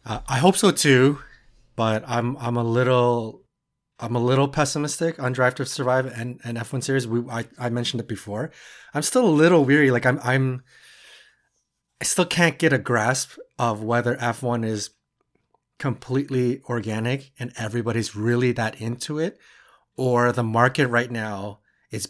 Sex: male